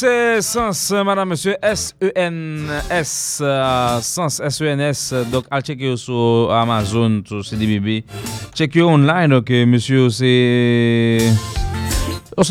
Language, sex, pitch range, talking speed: English, male, 110-140 Hz, 110 wpm